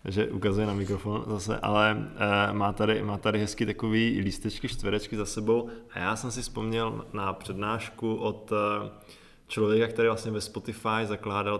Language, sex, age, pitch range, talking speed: Czech, male, 20-39, 100-115 Hz, 160 wpm